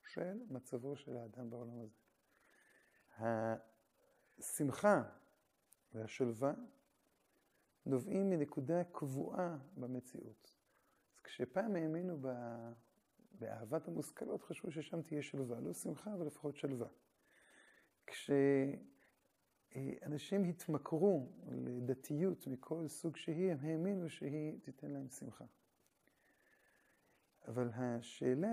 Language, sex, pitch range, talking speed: Hebrew, male, 125-170 Hz, 80 wpm